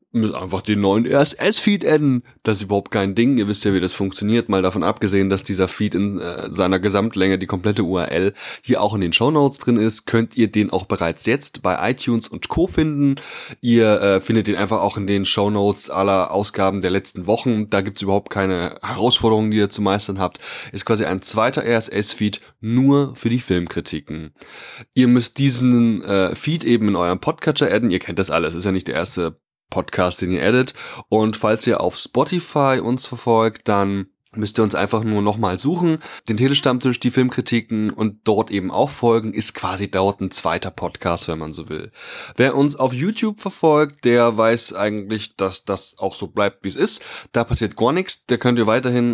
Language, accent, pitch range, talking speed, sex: German, German, 100-120 Hz, 205 wpm, male